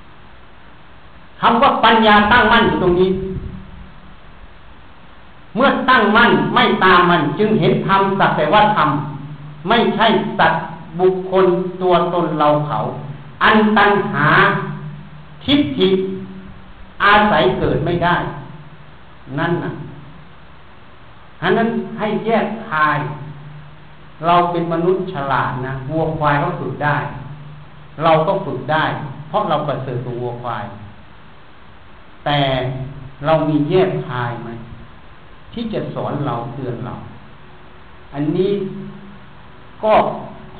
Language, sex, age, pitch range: Thai, male, 60-79, 145-185 Hz